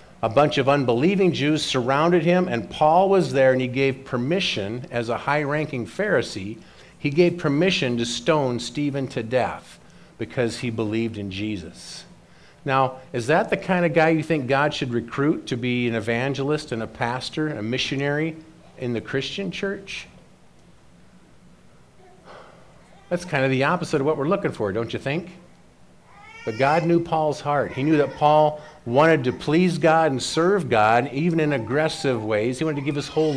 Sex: male